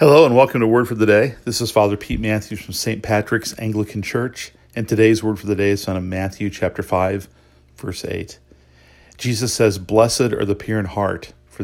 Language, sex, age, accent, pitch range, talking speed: English, male, 40-59, American, 90-110 Hz, 210 wpm